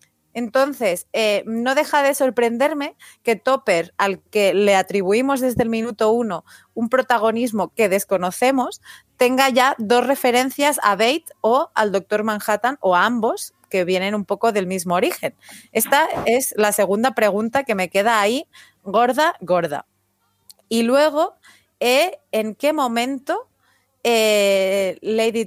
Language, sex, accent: Spanish, female, Spanish